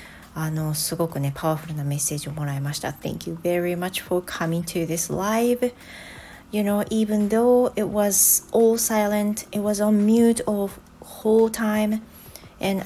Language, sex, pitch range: Japanese, female, 145-200 Hz